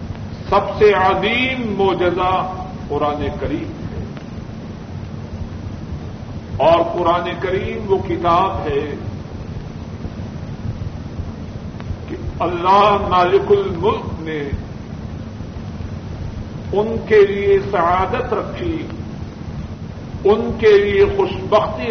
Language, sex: Urdu, male